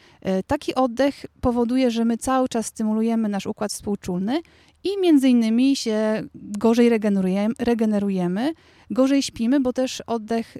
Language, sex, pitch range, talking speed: Polish, female, 205-250 Hz, 125 wpm